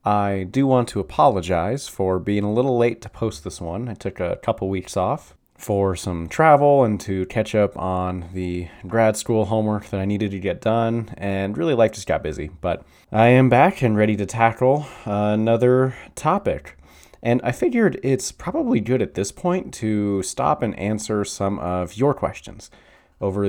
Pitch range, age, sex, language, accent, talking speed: 90-115 Hz, 30-49, male, English, American, 185 wpm